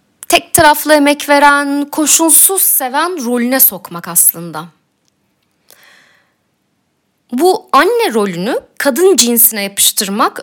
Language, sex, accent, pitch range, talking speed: Turkish, female, native, 225-340 Hz, 85 wpm